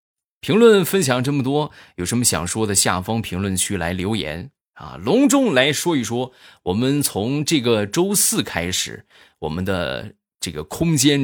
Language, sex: Chinese, male